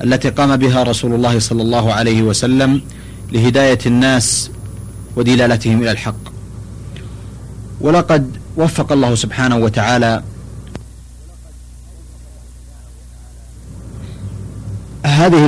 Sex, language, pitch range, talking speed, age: male, Arabic, 110-140 Hz, 80 wpm, 30-49